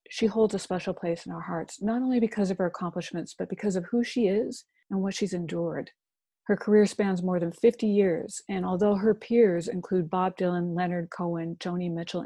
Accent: American